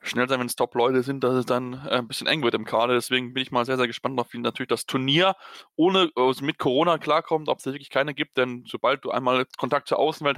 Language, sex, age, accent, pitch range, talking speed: German, male, 20-39, German, 130-155 Hz, 260 wpm